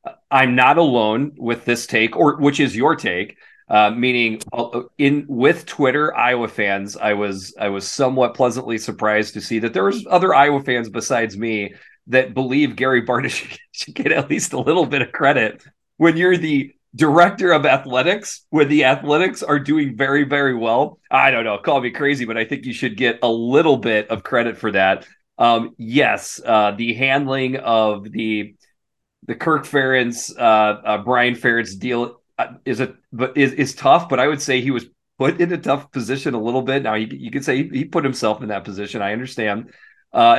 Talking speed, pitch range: 195 wpm, 115-140 Hz